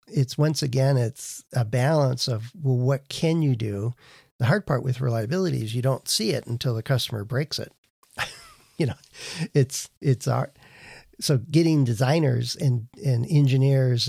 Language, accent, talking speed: English, American, 160 wpm